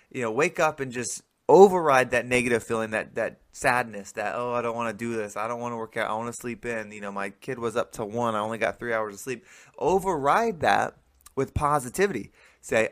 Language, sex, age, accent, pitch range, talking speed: English, male, 20-39, American, 115-140 Hz, 240 wpm